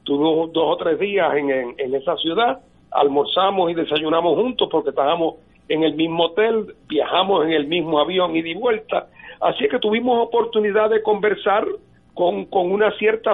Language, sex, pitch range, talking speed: Spanish, male, 180-275 Hz, 160 wpm